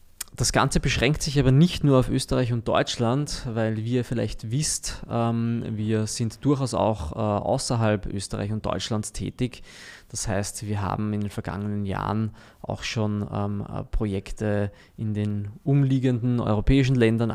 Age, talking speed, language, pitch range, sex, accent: 20-39, 150 wpm, German, 105-120 Hz, male, German